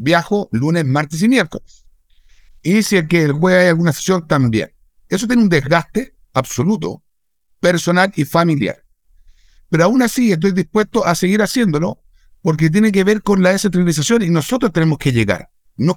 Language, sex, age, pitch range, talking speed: Spanish, male, 60-79, 130-185 Hz, 165 wpm